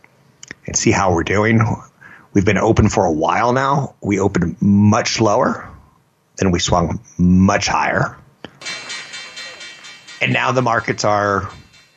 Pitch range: 90-115 Hz